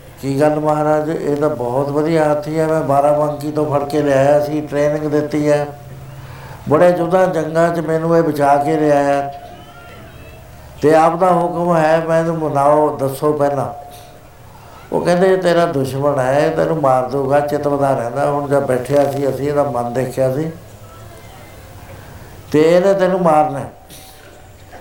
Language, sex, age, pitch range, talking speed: Punjabi, male, 60-79, 125-160 Hz, 145 wpm